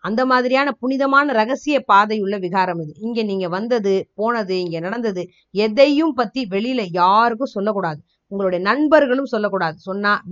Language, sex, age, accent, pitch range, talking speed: Tamil, female, 20-39, native, 185-260 Hz, 130 wpm